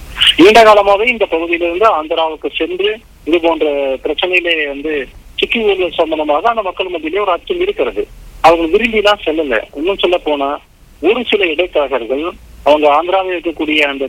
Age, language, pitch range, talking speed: 40-59, English, 145-200 Hz, 160 wpm